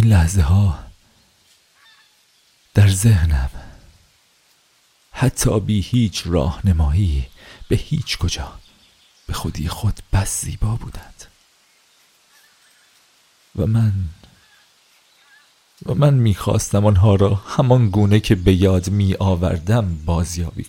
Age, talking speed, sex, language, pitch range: 40-59, 95 wpm, male, Persian, 90-115 Hz